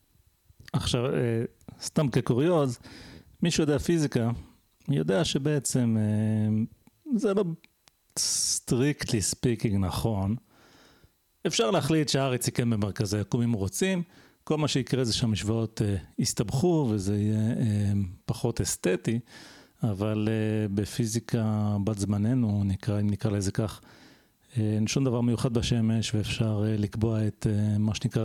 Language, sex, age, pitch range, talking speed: Hebrew, male, 40-59, 105-130 Hz, 105 wpm